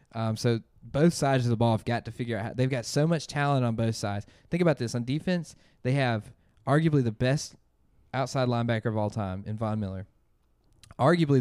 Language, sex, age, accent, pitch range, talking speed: English, male, 20-39, American, 110-140 Hz, 210 wpm